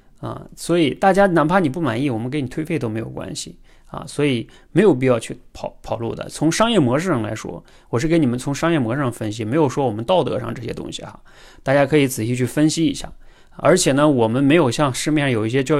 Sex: male